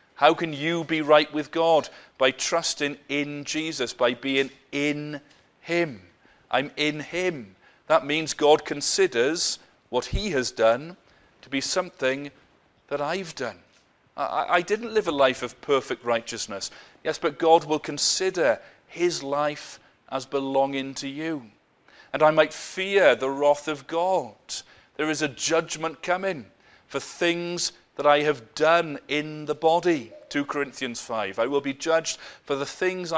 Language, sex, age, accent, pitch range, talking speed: English, male, 40-59, British, 130-165 Hz, 150 wpm